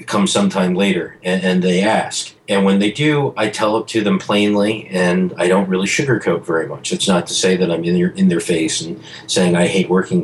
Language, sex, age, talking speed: English, male, 40-59, 235 wpm